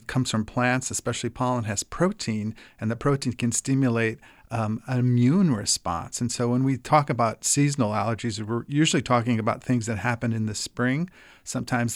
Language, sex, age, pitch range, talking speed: English, male, 40-59, 115-135 Hz, 175 wpm